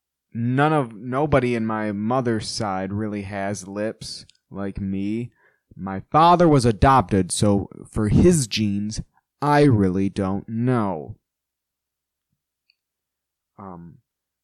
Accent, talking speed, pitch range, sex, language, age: American, 105 wpm, 95-130 Hz, male, English, 20-39